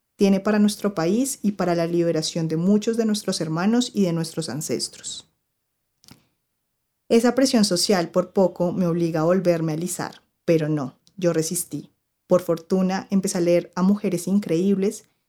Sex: female